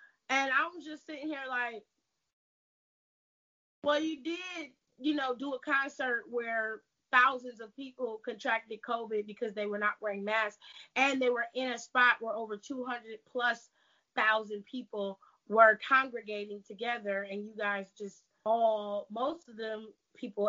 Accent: American